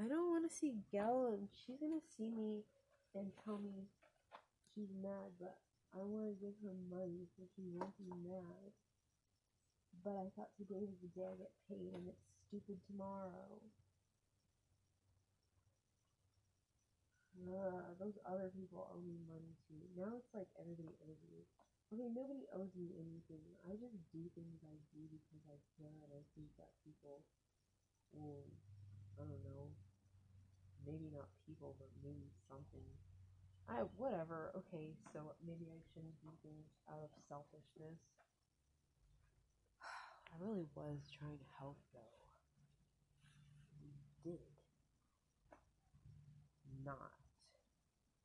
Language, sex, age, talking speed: English, female, 20-39, 130 wpm